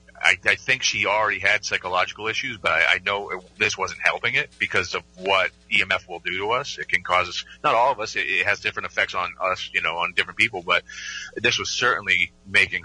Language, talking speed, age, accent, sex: English, 235 wpm, 30-49, American, male